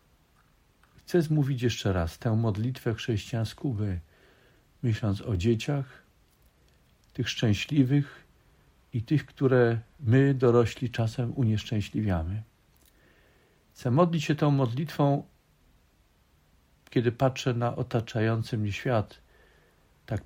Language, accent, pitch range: Polish, native, 90-130 Hz